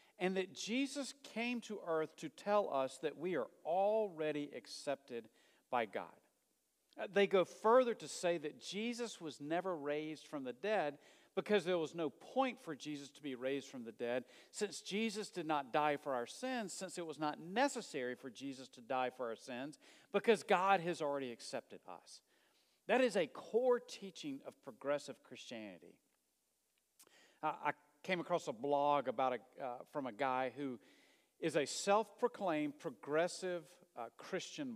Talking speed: 165 wpm